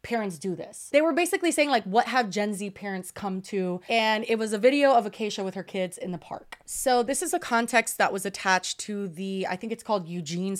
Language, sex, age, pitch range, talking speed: English, female, 20-39, 185-230 Hz, 245 wpm